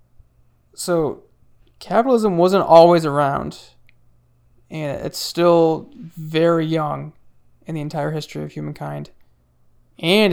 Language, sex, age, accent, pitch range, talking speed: English, male, 20-39, American, 120-175 Hz, 100 wpm